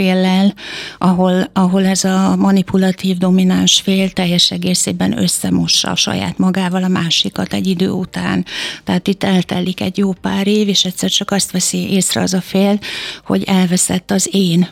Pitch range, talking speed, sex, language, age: 180-195 Hz, 160 wpm, female, Hungarian, 60-79